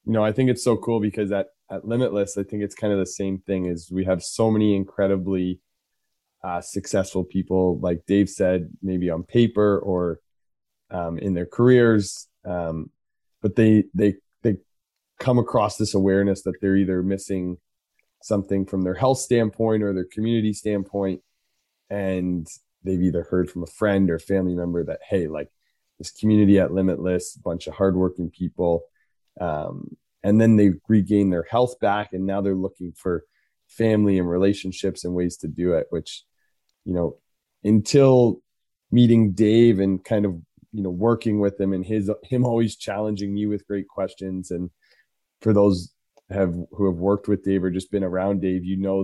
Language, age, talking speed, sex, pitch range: English, 20-39, 175 wpm, male, 90-105 Hz